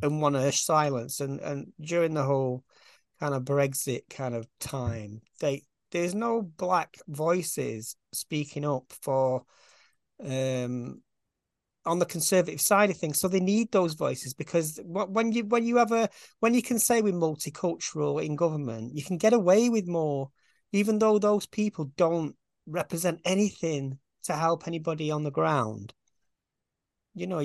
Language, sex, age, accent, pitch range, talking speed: English, male, 40-59, British, 145-185 Hz, 155 wpm